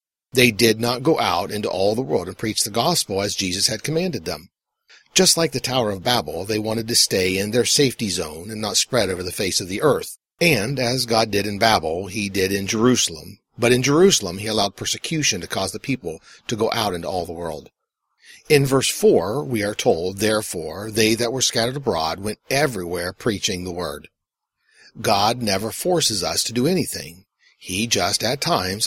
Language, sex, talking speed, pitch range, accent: English, male, 200 wpm, 100-125 Hz, American